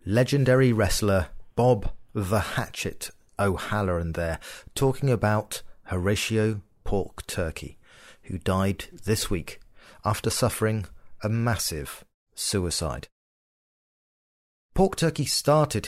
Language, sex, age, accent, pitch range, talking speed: English, male, 40-59, British, 85-125 Hz, 90 wpm